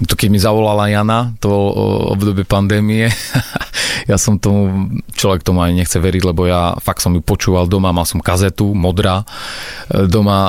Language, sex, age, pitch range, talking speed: Slovak, male, 30-49, 95-105 Hz, 155 wpm